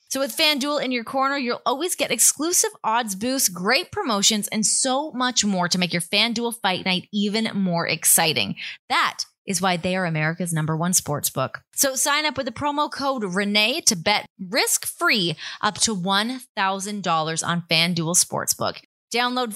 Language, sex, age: English, female, 20-39